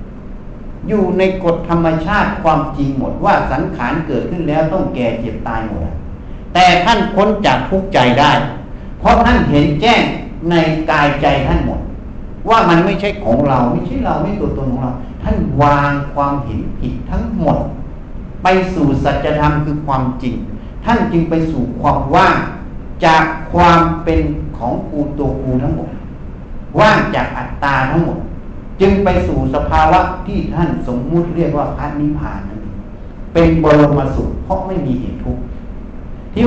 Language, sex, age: Thai, male, 60-79